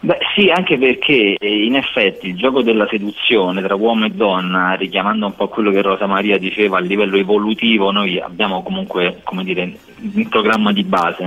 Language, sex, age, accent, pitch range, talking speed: Italian, male, 30-49, native, 95-110 Hz, 180 wpm